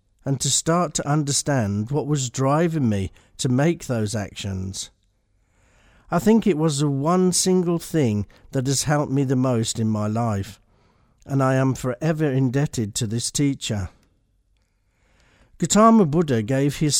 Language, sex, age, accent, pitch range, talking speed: English, male, 50-69, British, 105-150 Hz, 150 wpm